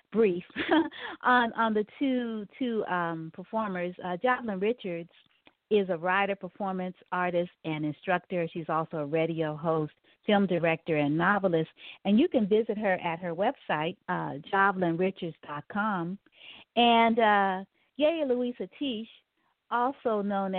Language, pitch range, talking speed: English, 170-220 Hz, 130 wpm